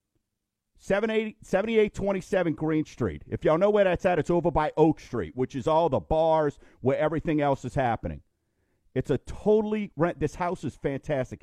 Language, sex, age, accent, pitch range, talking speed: English, male, 50-69, American, 120-175 Hz, 175 wpm